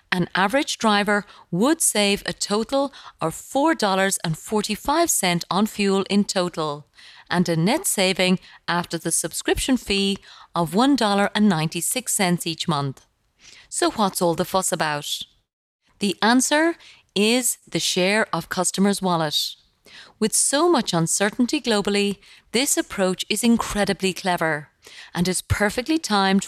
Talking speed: 120 wpm